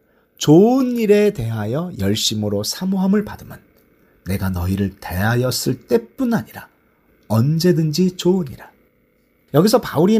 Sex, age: male, 40-59